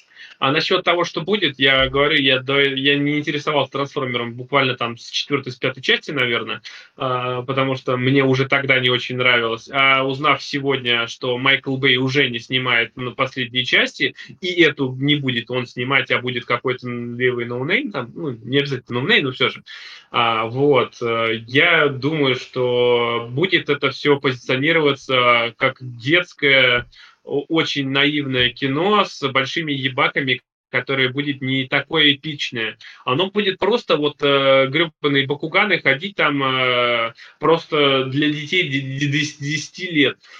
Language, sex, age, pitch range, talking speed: Russian, male, 20-39, 130-150 Hz, 140 wpm